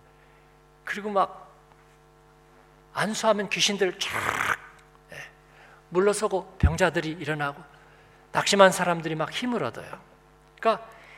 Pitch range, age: 160-230 Hz, 40-59